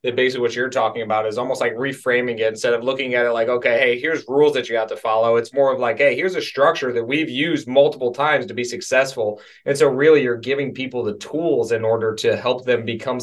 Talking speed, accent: 255 wpm, American